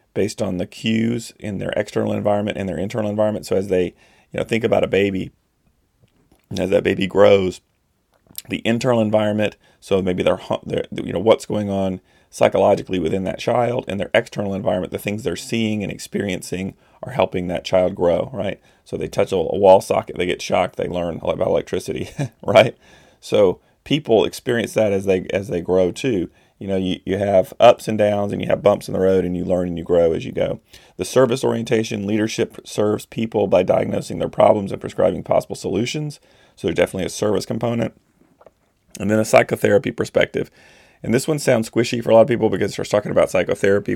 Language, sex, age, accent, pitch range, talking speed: English, male, 30-49, American, 95-110 Hz, 200 wpm